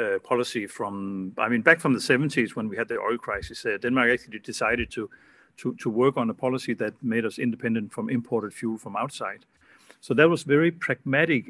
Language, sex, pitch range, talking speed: English, male, 120-150 Hz, 210 wpm